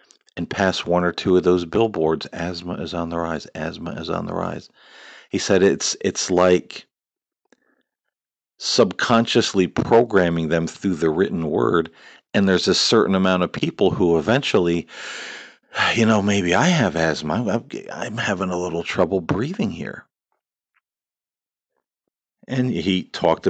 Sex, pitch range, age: male, 75-90 Hz, 50-69